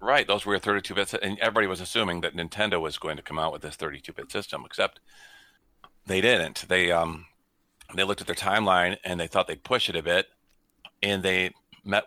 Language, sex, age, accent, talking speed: English, male, 40-59, American, 205 wpm